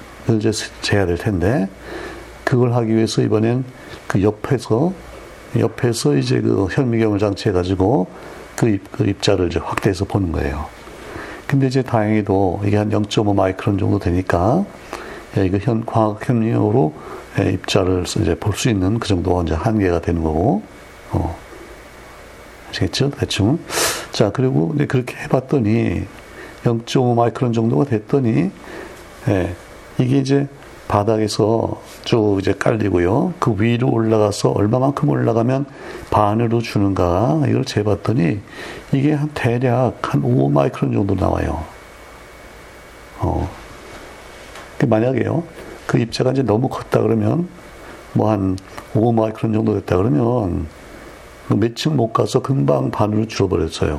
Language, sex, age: Korean, male, 60-79